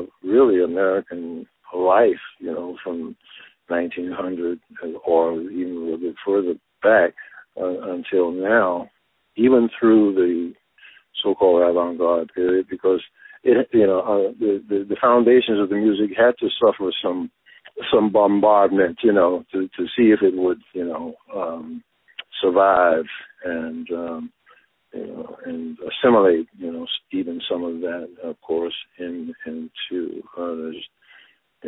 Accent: American